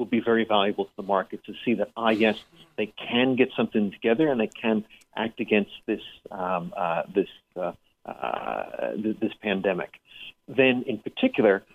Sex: male